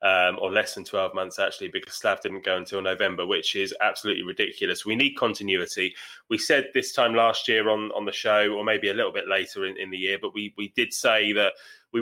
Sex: male